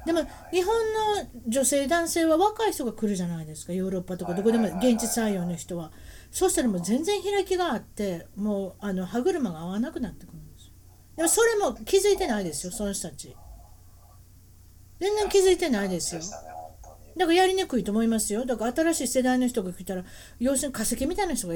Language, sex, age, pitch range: Japanese, female, 40-59, 170-275 Hz